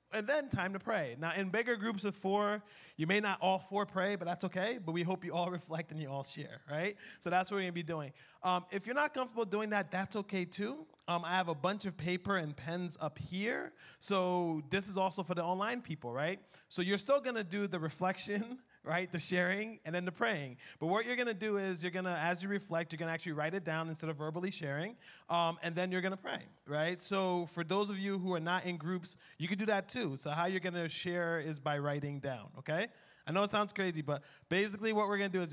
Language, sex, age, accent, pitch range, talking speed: English, male, 30-49, American, 165-200 Hz, 255 wpm